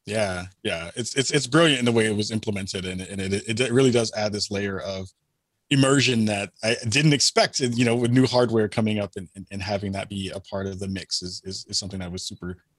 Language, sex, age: English, male, 20-39